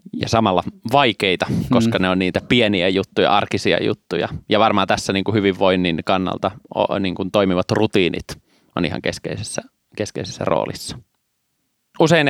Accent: native